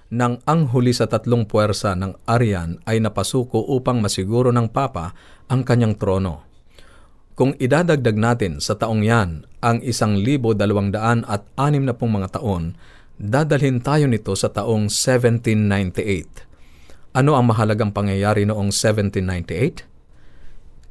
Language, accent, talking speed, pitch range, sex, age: Filipino, native, 110 wpm, 95-120 Hz, male, 50-69